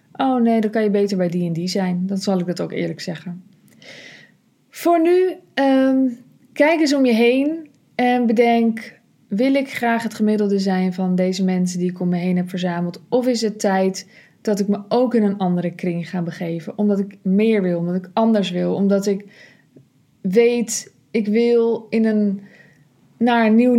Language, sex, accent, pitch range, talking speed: Dutch, female, Dutch, 190-240 Hz, 185 wpm